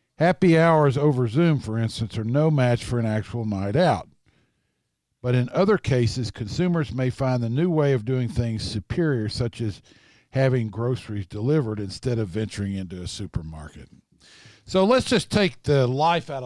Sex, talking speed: male, 170 wpm